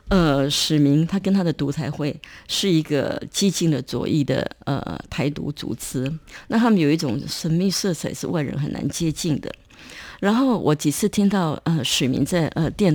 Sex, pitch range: female, 150-200 Hz